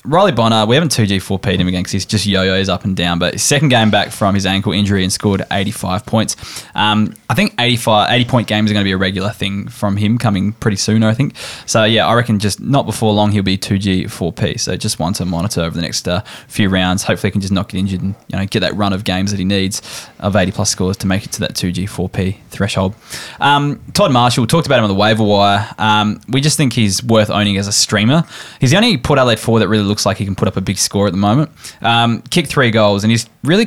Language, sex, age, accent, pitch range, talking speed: English, male, 10-29, Australian, 95-115 Hz, 260 wpm